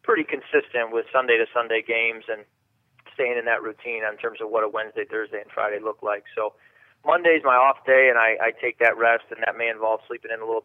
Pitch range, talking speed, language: 110-130 Hz, 230 wpm, English